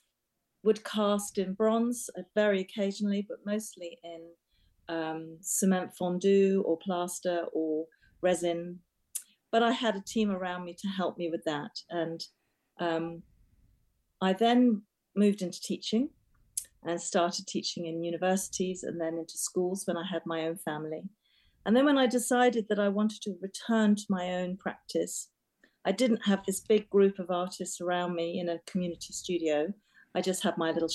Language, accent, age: English, British, 40-59